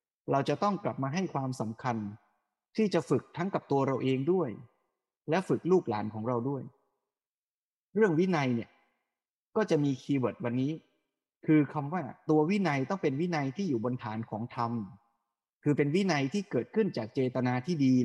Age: 20-39